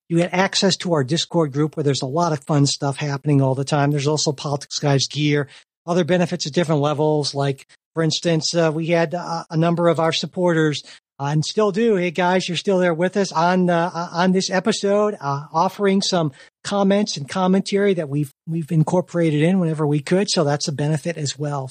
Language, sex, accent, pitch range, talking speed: English, male, American, 145-175 Hz, 210 wpm